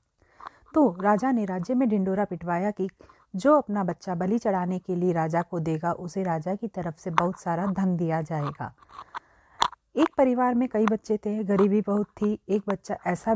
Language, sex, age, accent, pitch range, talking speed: Hindi, female, 40-59, native, 170-215 Hz, 180 wpm